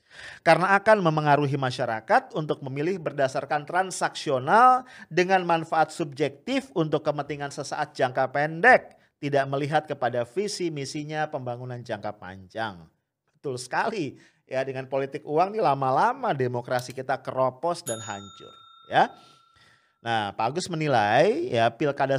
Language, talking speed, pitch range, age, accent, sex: English, 120 wpm, 125-165 Hz, 40-59, Indonesian, male